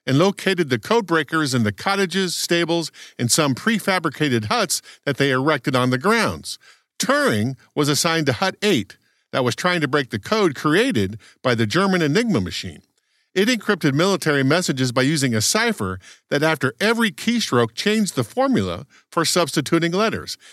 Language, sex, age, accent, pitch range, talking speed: English, male, 50-69, American, 130-195 Hz, 160 wpm